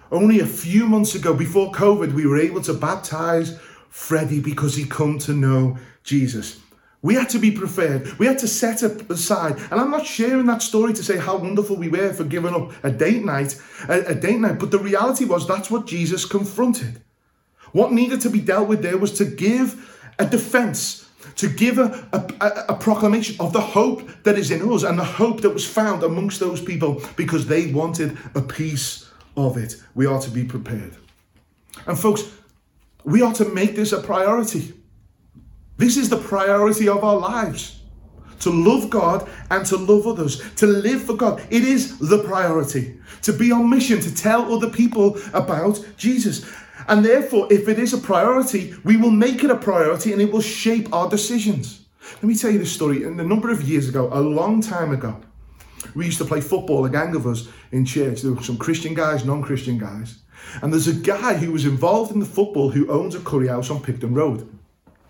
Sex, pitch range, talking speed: male, 140-215 Hz, 200 wpm